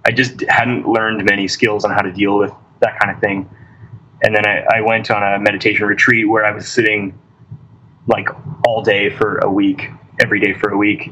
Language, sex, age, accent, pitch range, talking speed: English, male, 20-39, American, 105-130 Hz, 210 wpm